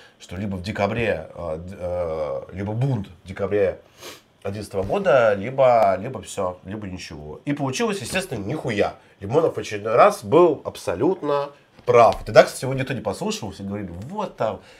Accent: native